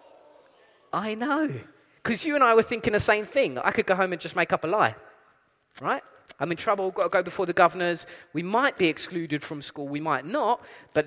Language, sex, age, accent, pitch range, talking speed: English, male, 20-39, British, 175-270 Hz, 220 wpm